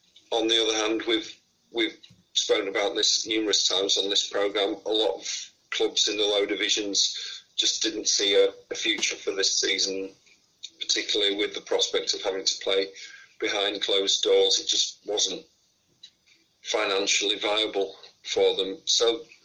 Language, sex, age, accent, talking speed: English, male, 40-59, British, 155 wpm